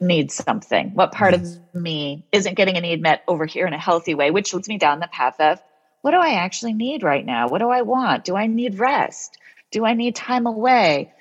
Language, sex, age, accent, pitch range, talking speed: English, female, 40-59, American, 175-235 Hz, 235 wpm